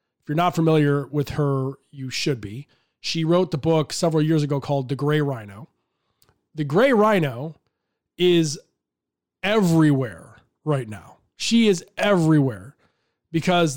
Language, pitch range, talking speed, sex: English, 140-185 Hz, 135 wpm, male